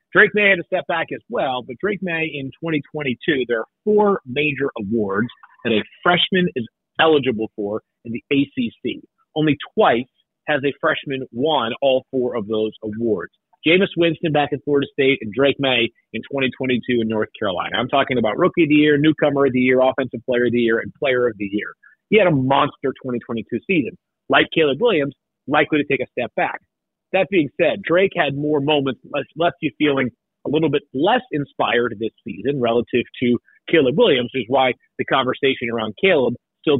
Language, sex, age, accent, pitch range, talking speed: English, male, 30-49, American, 120-170 Hz, 190 wpm